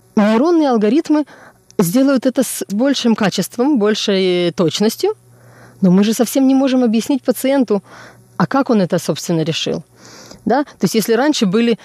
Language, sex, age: Russian, female, 20-39